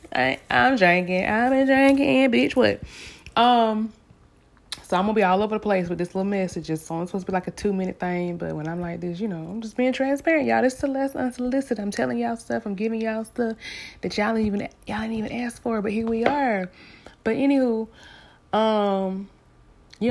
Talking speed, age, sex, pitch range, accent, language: 215 wpm, 30-49, female, 185-245 Hz, American, English